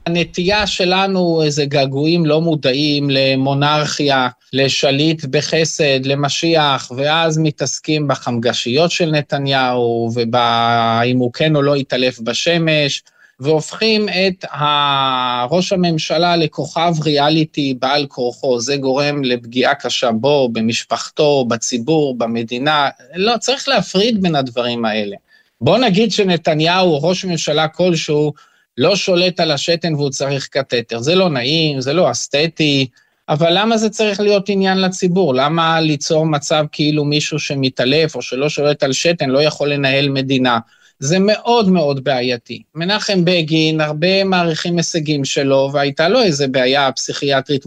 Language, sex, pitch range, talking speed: Hebrew, male, 135-170 Hz, 130 wpm